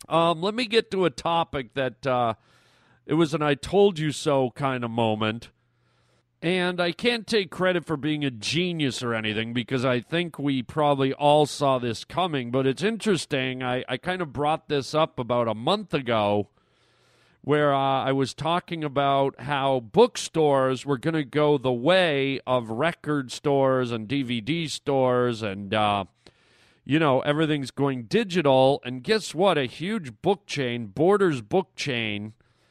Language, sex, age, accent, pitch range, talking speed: English, male, 40-59, American, 125-160 Hz, 165 wpm